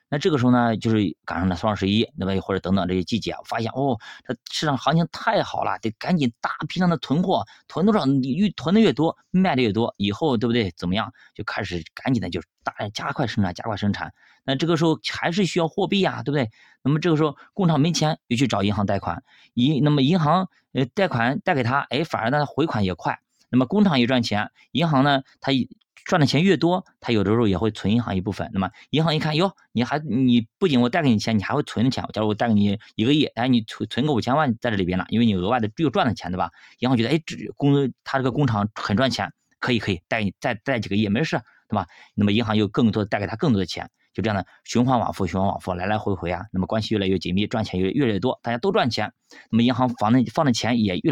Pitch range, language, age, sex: 105-145 Hz, Chinese, 20-39, male